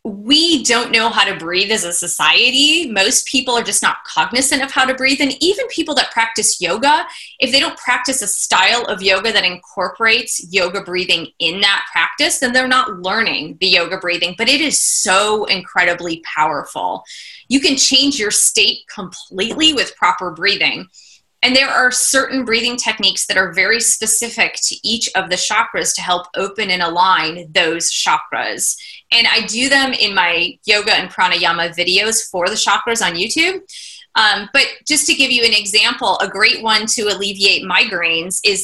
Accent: American